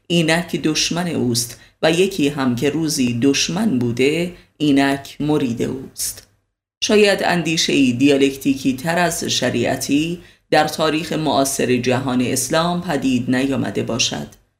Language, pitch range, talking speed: Persian, 125-160 Hz, 115 wpm